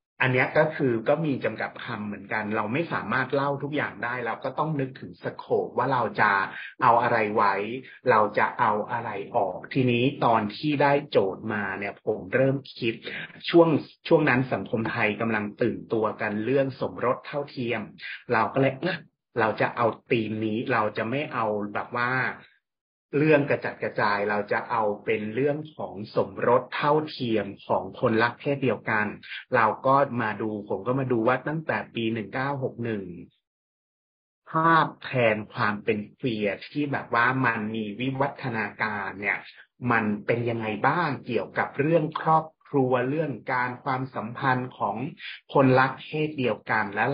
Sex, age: male, 30-49